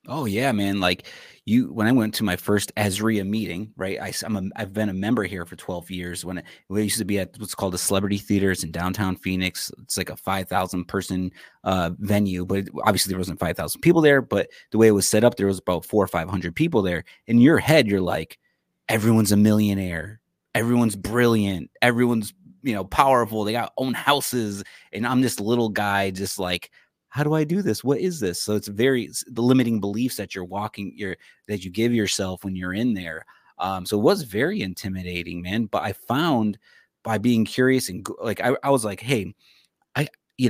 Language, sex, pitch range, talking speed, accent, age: English, male, 95-115 Hz, 220 wpm, American, 30-49